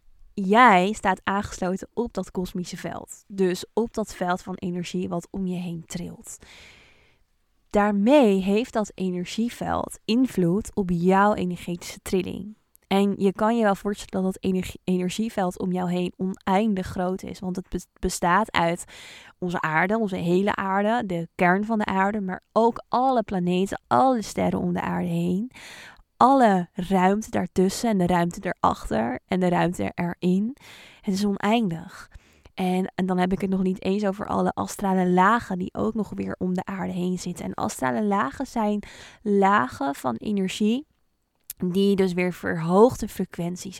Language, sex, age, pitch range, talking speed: Dutch, female, 20-39, 180-210 Hz, 155 wpm